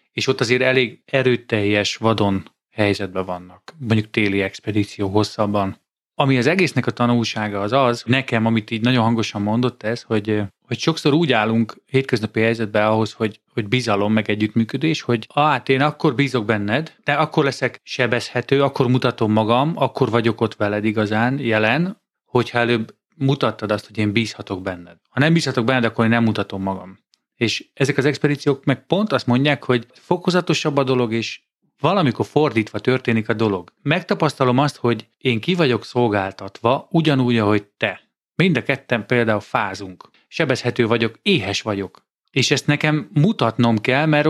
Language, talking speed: Hungarian, 160 wpm